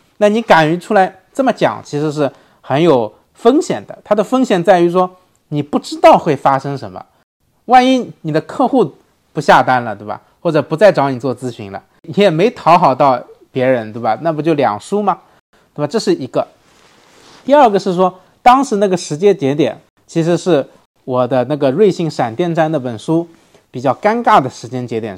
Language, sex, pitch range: Chinese, male, 140-210 Hz